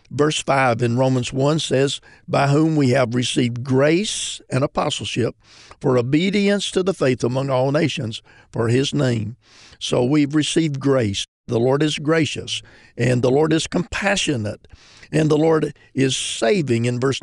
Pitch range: 120-150 Hz